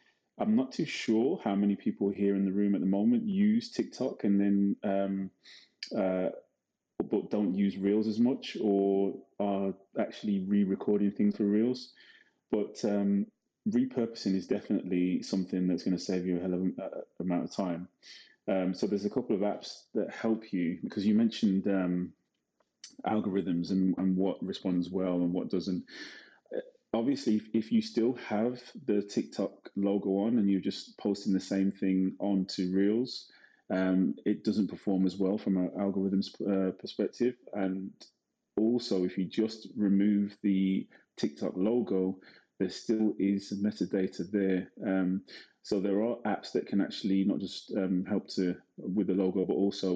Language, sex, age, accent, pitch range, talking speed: English, male, 20-39, British, 95-105 Hz, 160 wpm